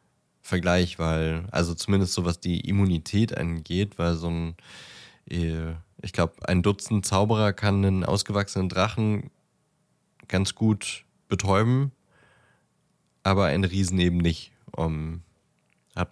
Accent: German